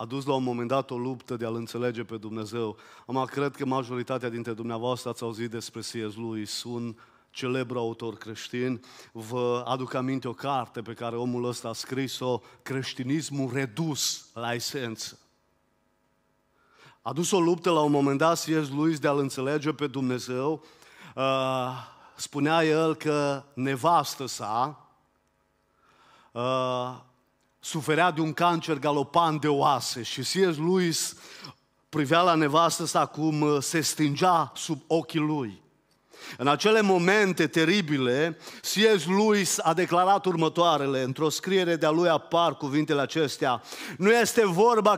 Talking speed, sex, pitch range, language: 135 wpm, male, 125-170 Hz, Romanian